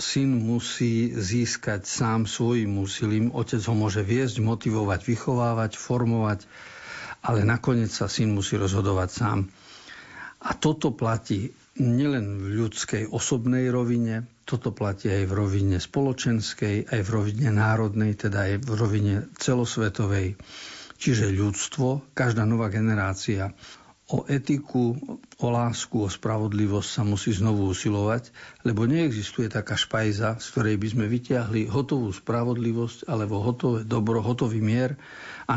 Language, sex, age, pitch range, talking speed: Slovak, male, 50-69, 105-125 Hz, 125 wpm